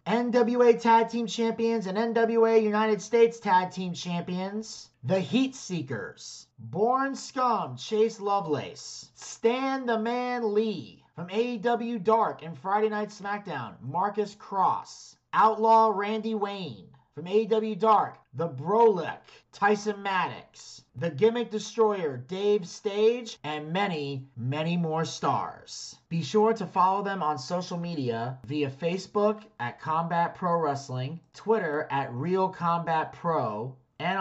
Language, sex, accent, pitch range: English, male, American, 140-200 Hz